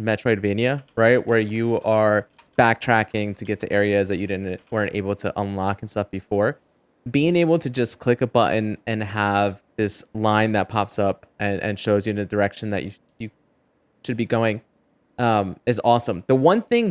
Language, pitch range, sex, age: English, 100-120 Hz, male, 20-39